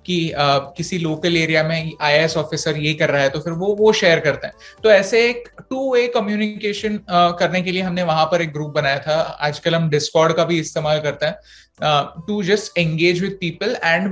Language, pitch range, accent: Hindi, 160-205 Hz, native